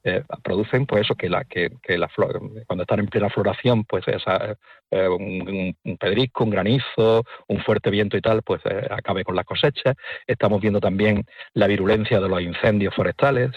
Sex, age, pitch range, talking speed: male, 50-69, 100-120 Hz, 190 wpm